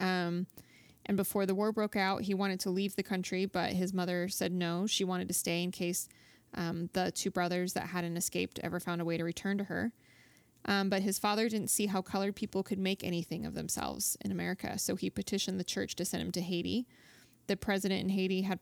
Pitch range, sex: 175-195 Hz, female